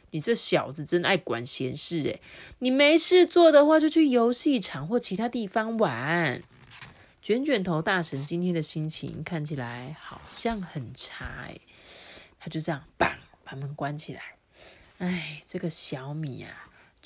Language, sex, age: Chinese, female, 20-39